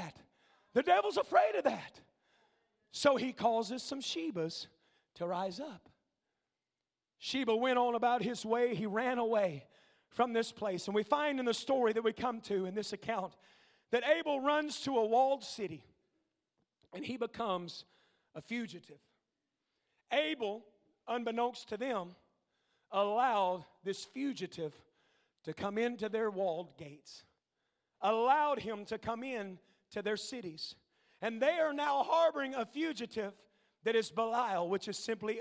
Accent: American